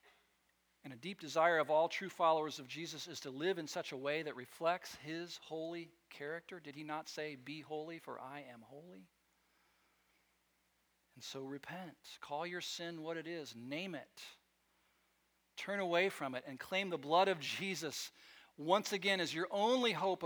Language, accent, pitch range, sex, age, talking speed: English, American, 130-170 Hz, male, 50-69, 175 wpm